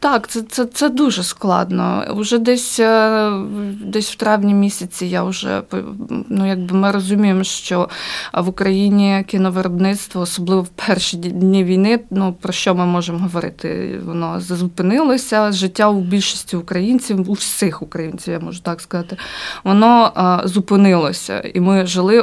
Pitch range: 180-210 Hz